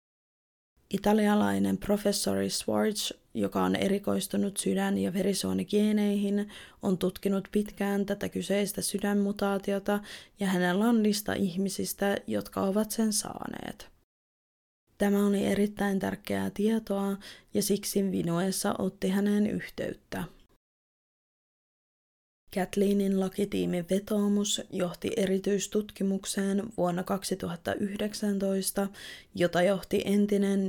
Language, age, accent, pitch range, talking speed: Finnish, 20-39, native, 180-200 Hz, 90 wpm